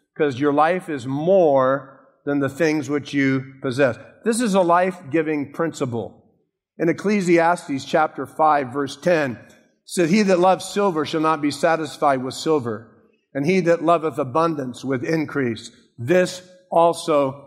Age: 50-69